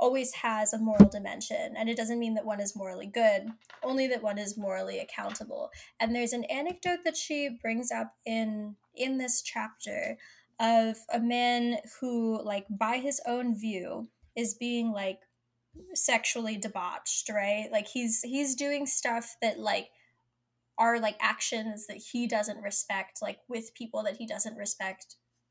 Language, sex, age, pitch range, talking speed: English, female, 10-29, 215-250 Hz, 160 wpm